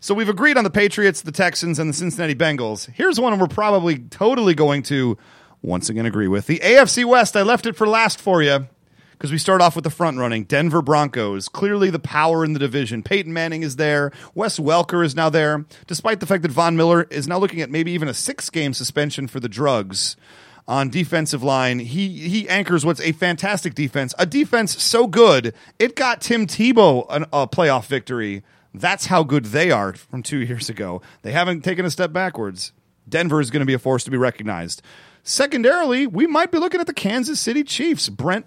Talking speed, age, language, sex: 205 wpm, 30-49, English, male